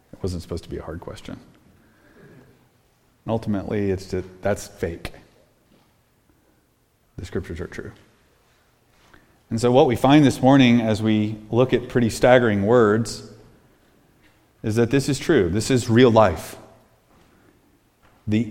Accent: American